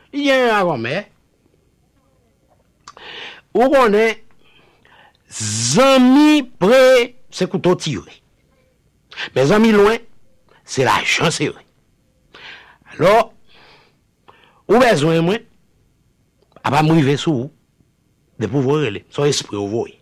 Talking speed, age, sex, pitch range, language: 65 wpm, 60-79, male, 150-245 Hz, English